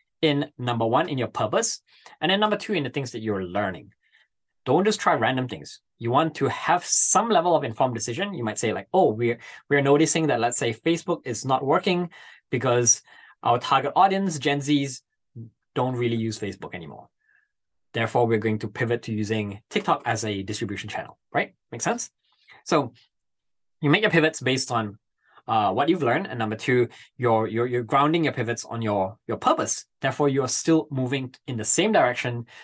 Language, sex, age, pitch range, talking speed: English, male, 20-39, 115-150 Hz, 190 wpm